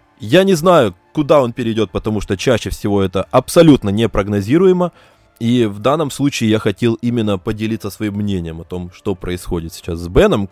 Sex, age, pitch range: male, 20-39, 95-125 Hz